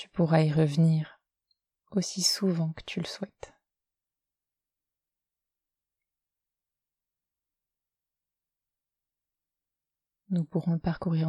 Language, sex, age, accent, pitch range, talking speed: French, female, 30-49, French, 125-180 Hz, 75 wpm